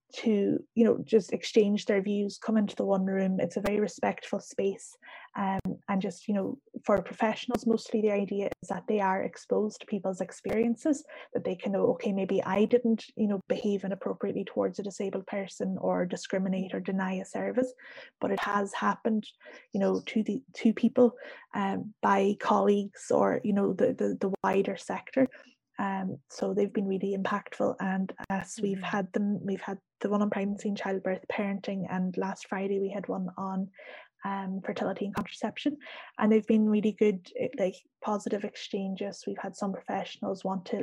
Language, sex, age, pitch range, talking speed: English, female, 20-39, 195-220 Hz, 180 wpm